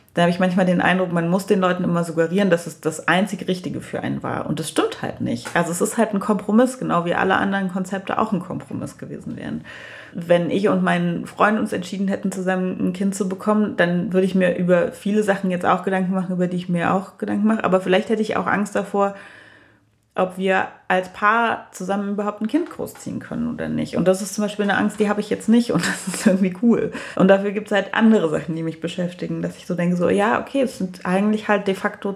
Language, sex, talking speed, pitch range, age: German, female, 245 wpm, 175-205 Hz, 30-49